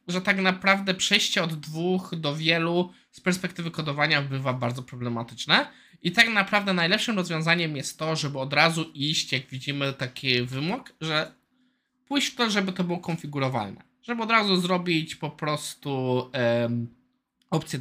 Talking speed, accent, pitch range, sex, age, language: 150 wpm, native, 135-190 Hz, male, 20-39, Polish